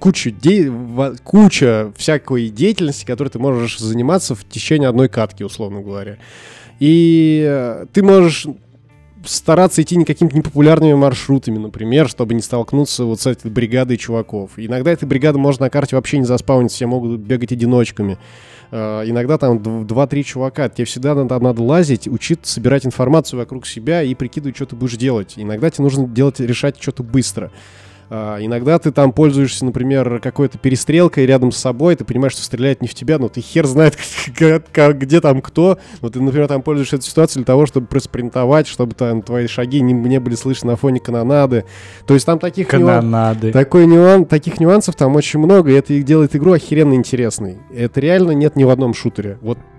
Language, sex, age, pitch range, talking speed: Russian, male, 20-39, 120-150 Hz, 170 wpm